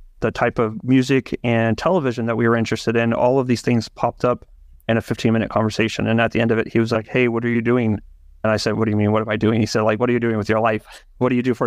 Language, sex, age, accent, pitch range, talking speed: English, male, 30-49, American, 115-125 Hz, 320 wpm